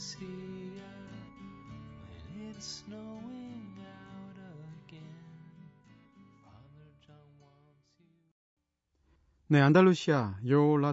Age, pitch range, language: 40-59, 110-160 Hz, Korean